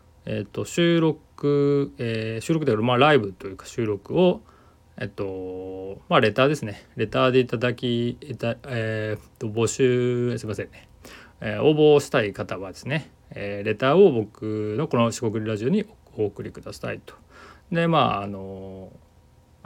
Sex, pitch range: male, 100-145 Hz